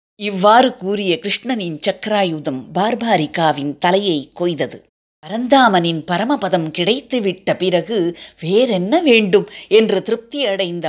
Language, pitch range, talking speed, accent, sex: Tamil, 180-245 Hz, 85 wpm, native, female